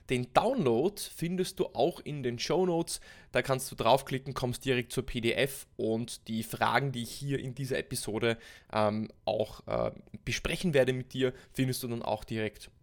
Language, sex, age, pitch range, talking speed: German, male, 20-39, 115-165 Hz, 180 wpm